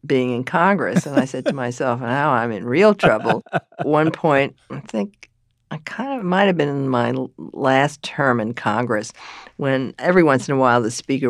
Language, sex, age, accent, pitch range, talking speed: English, female, 50-69, American, 135-195 Hz, 200 wpm